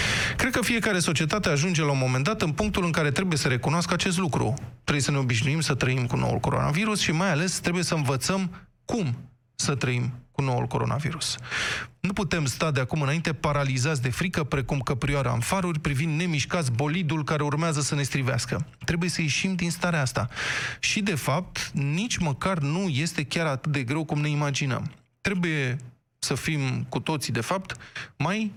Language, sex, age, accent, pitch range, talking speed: Romanian, male, 20-39, native, 130-175 Hz, 185 wpm